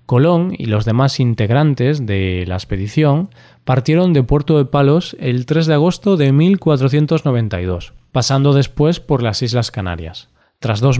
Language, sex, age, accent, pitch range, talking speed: Spanish, male, 20-39, Spanish, 120-155 Hz, 145 wpm